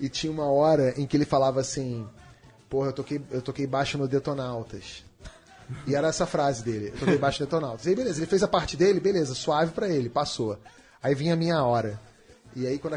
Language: Portuguese